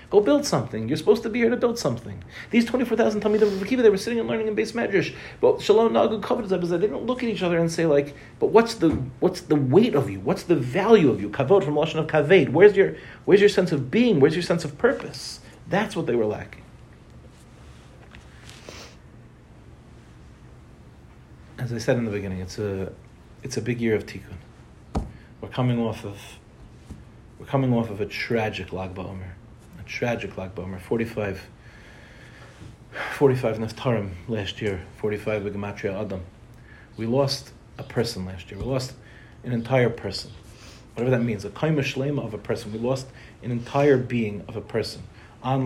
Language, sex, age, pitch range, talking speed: English, male, 40-59, 110-145 Hz, 185 wpm